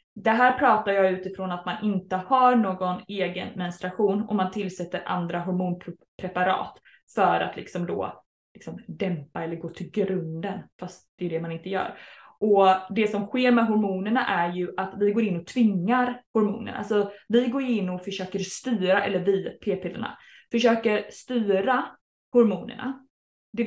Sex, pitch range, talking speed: female, 195-245 Hz, 155 wpm